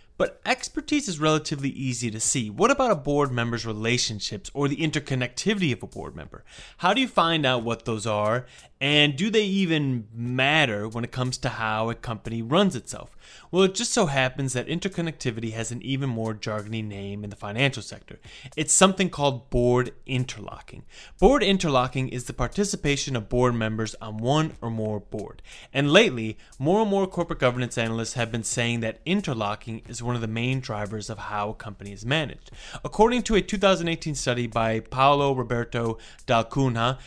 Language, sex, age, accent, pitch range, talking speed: English, male, 30-49, American, 115-150 Hz, 180 wpm